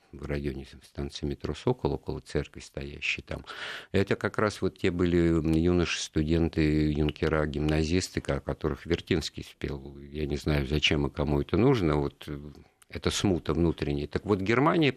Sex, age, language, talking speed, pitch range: male, 50-69, Russian, 150 wpm, 75-95 Hz